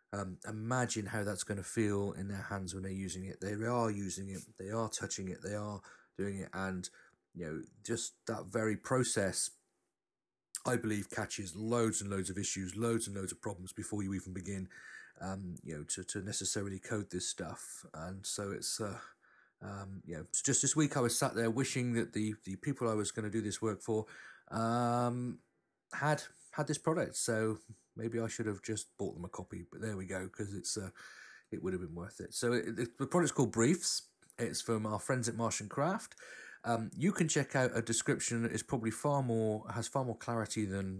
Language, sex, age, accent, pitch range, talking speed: English, male, 40-59, British, 100-125 Hz, 210 wpm